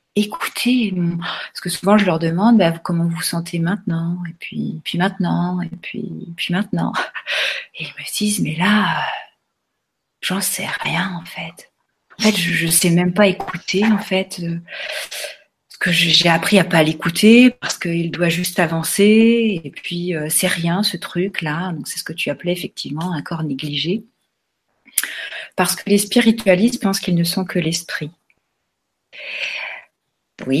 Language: French